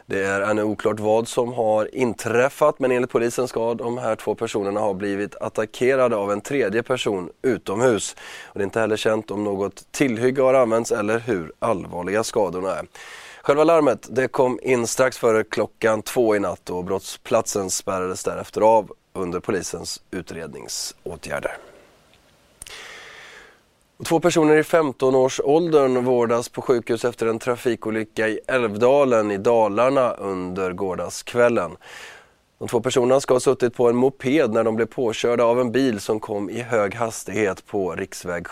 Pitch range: 105-130 Hz